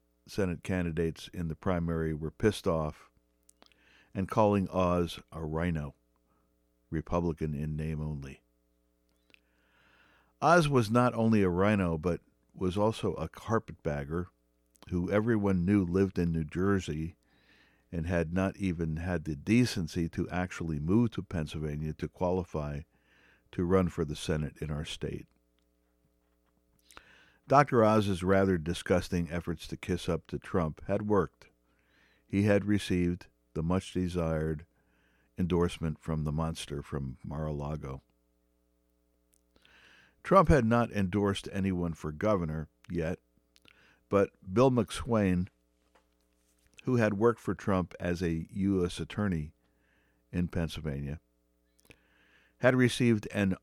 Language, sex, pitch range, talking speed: English, male, 65-95 Hz, 115 wpm